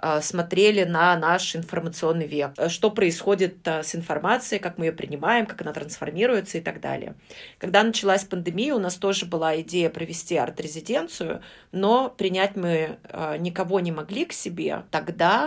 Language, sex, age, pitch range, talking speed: Russian, female, 30-49, 170-200 Hz, 145 wpm